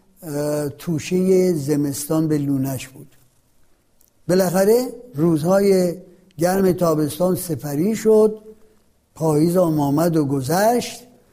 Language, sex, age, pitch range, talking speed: Persian, male, 60-79, 160-210 Hz, 85 wpm